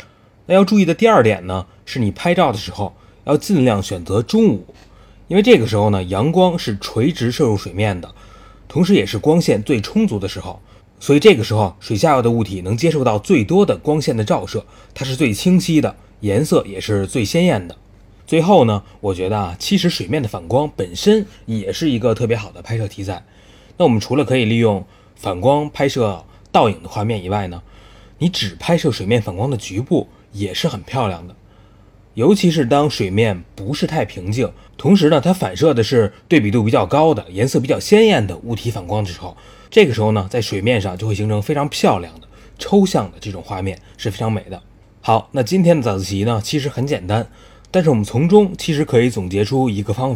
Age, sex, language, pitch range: 20-39, male, Chinese, 100-150 Hz